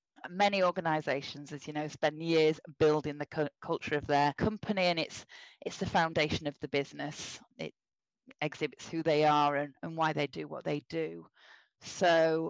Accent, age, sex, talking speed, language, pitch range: British, 30-49, female, 175 wpm, English, 150-175 Hz